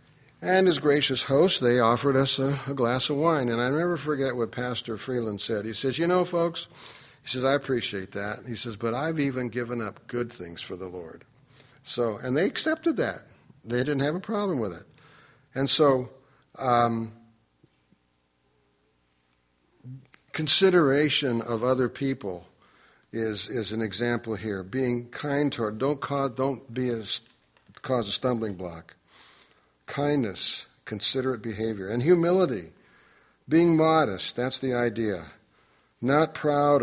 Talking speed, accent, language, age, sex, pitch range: 145 wpm, American, English, 60-79, male, 110-135 Hz